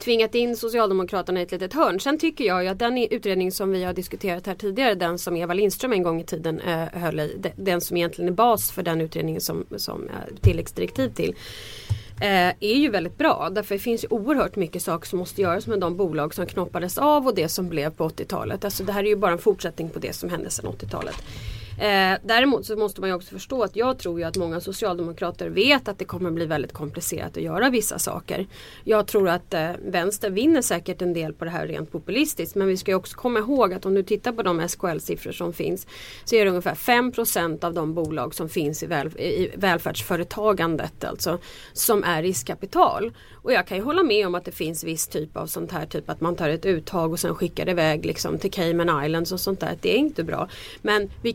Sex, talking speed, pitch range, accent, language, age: female, 230 wpm, 170-215 Hz, native, Swedish, 30-49